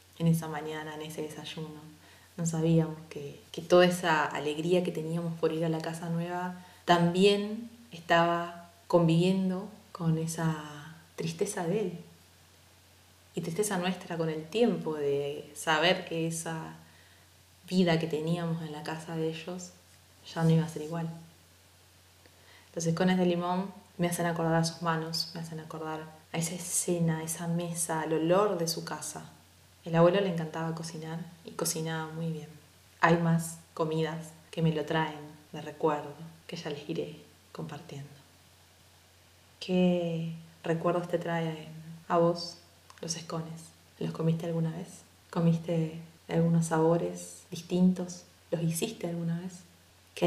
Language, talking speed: Spanish, 145 wpm